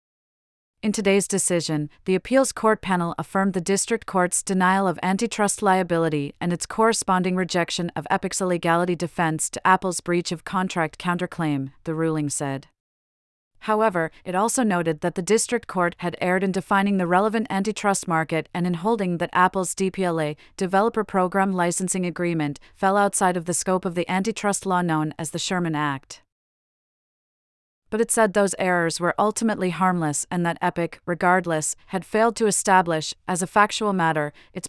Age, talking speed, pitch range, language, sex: 30-49, 160 wpm, 170-195 Hz, English, female